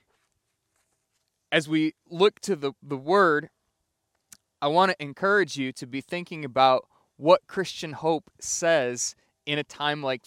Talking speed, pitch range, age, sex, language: 140 wpm, 140-180 Hz, 20-39, male, English